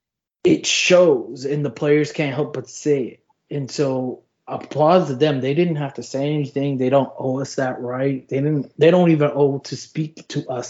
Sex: male